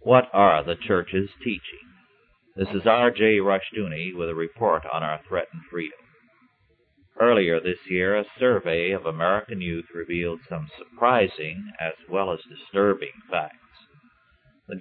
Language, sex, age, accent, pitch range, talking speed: English, male, 50-69, American, 90-120 Hz, 135 wpm